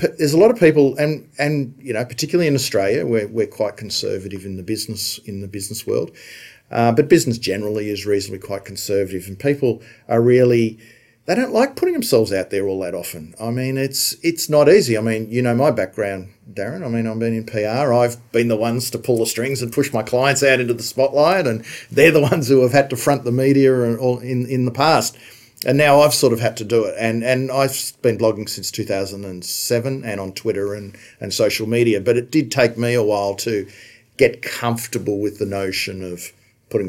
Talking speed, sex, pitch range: 225 wpm, male, 105-135 Hz